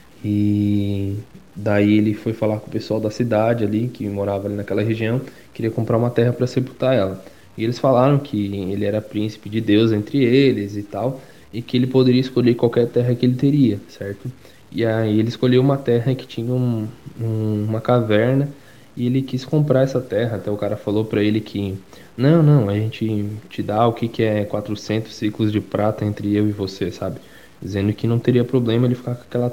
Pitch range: 105-125 Hz